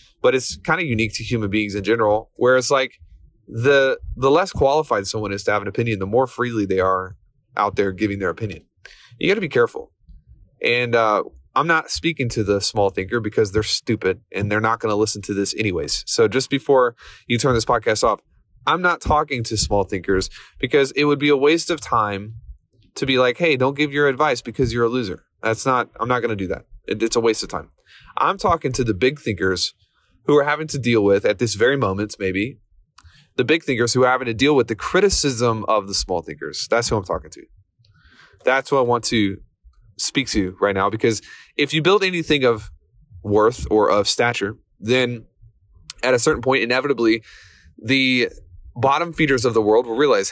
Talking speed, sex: 210 wpm, male